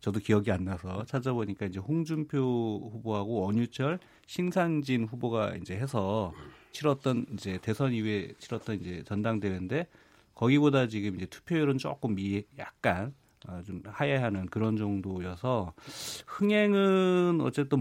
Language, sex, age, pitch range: Korean, male, 40-59, 100-135 Hz